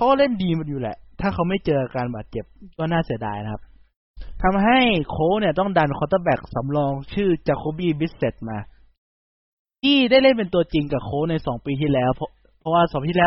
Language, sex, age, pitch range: Thai, male, 20-39, 130-180 Hz